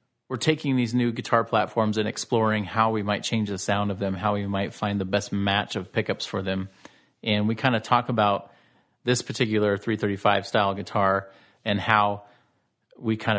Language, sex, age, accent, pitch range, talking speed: English, male, 30-49, American, 100-115 Hz, 190 wpm